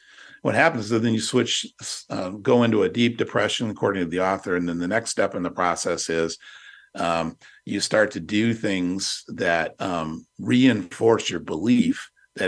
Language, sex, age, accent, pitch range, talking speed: English, male, 50-69, American, 90-115 Hz, 180 wpm